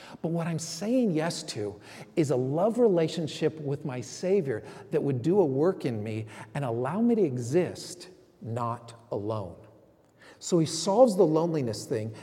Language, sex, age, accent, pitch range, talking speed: English, male, 40-59, American, 115-170 Hz, 160 wpm